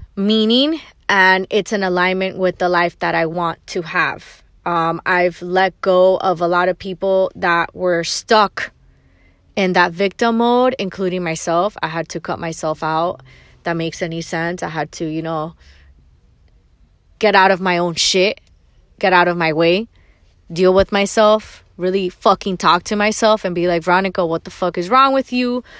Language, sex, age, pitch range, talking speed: English, female, 20-39, 175-230 Hz, 175 wpm